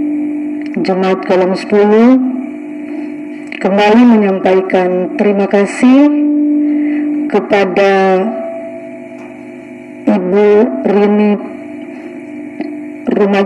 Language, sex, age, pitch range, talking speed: Indonesian, female, 30-49, 200-300 Hz, 50 wpm